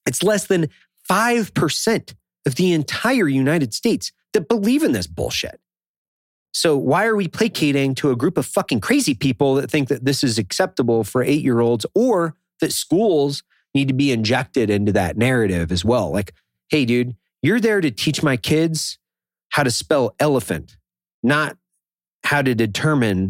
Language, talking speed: English, 160 wpm